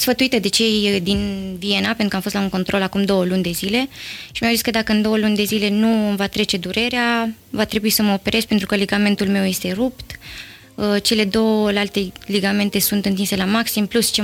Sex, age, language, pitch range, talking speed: female, 20-39, Romanian, 200-225 Hz, 220 wpm